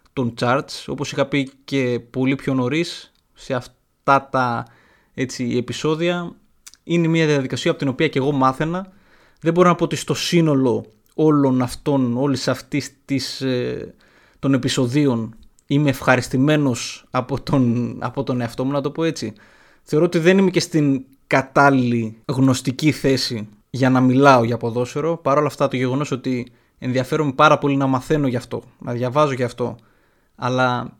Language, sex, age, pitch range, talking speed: Greek, male, 20-39, 125-150 Hz, 160 wpm